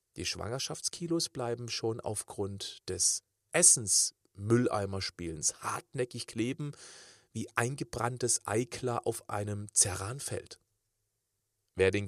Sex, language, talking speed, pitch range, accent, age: male, German, 85 wpm, 105-135 Hz, German, 40-59